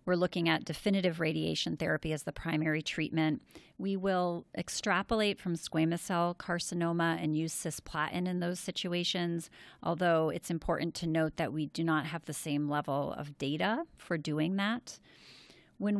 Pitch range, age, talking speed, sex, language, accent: 155-185 Hz, 40-59, 160 wpm, female, English, American